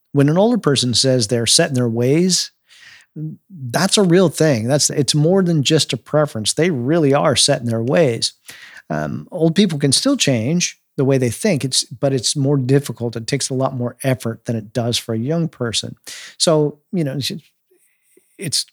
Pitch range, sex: 125-150 Hz, male